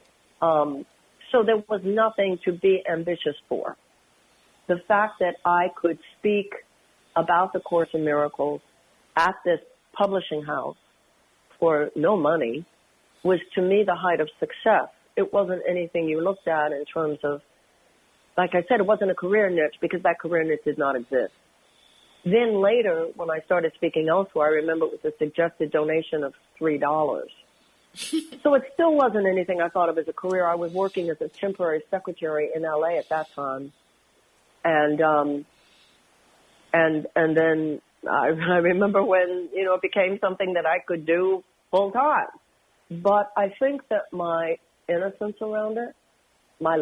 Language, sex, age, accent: English, female, 50-69, American